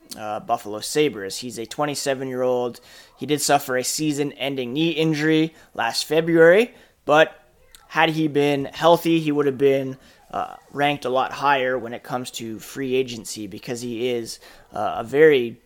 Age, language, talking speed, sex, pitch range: 20-39, English, 165 wpm, male, 125-155 Hz